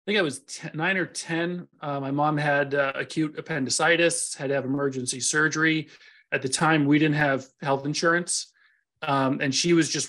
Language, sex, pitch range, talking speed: English, male, 135-160 Hz, 185 wpm